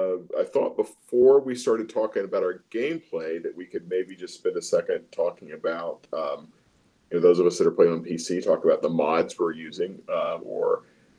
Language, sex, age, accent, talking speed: English, male, 40-59, American, 205 wpm